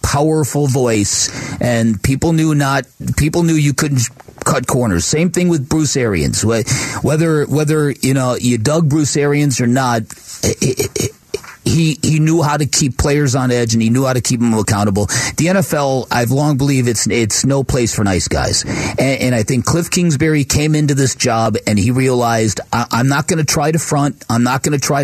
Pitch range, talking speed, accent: 120-150 Hz, 205 wpm, American